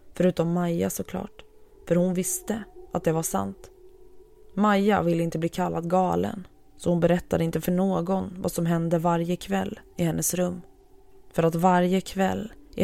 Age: 20-39